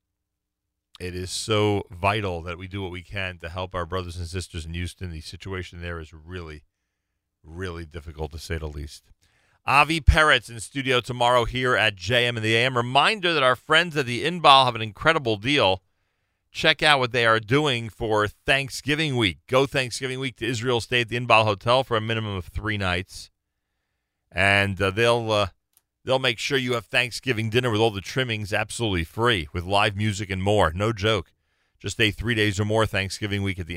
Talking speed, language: 195 wpm, English